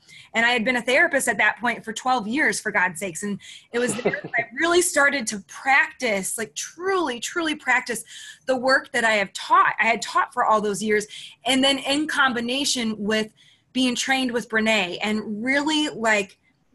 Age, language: 20-39, English